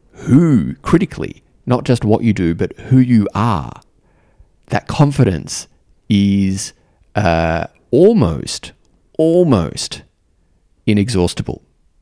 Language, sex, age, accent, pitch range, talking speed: English, male, 30-49, Australian, 85-110 Hz, 90 wpm